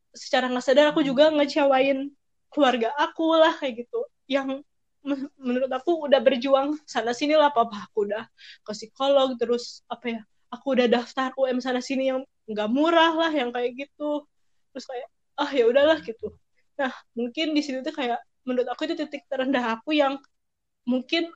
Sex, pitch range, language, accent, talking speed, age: female, 235-295 Hz, Indonesian, native, 170 wpm, 20-39